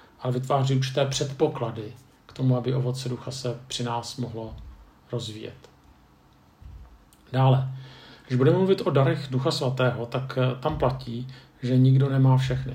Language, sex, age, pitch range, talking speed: Czech, male, 50-69, 125-135 Hz, 135 wpm